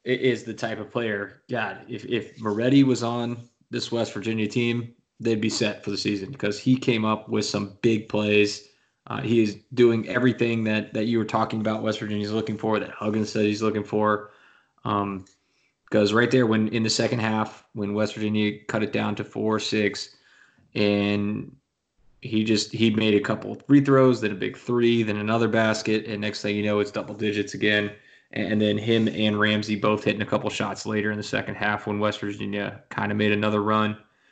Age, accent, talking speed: 20-39, American, 205 wpm